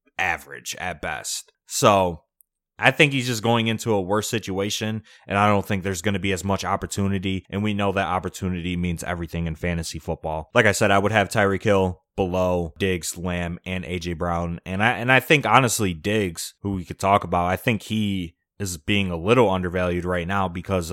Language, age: English, 20-39